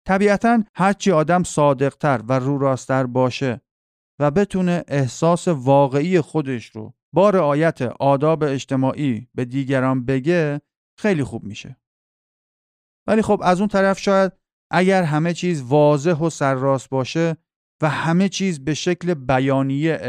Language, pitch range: Persian, 140-180 Hz